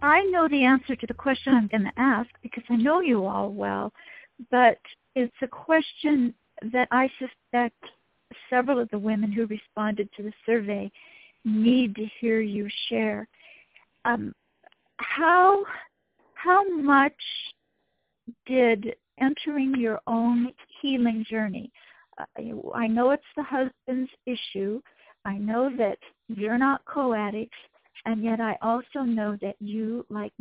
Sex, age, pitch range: female, 50-69, 215-260 Hz